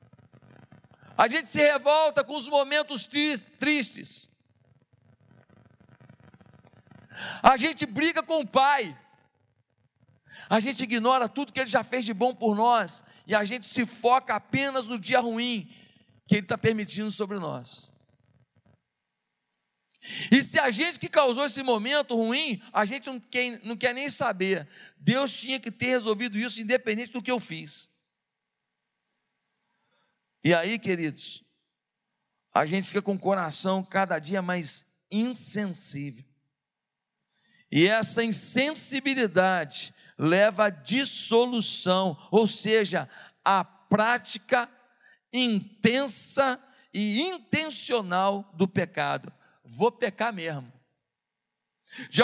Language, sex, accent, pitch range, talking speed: Portuguese, male, Brazilian, 150-250 Hz, 115 wpm